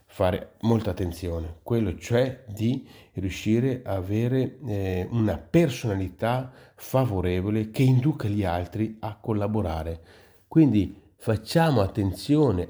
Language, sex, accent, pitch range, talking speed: Italian, male, native, 95-125 Hz, 105 wpm